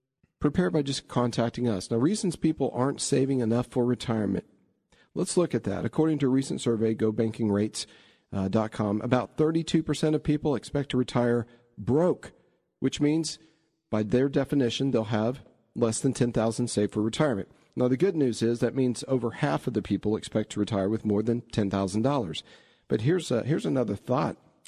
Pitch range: 110-135 Hz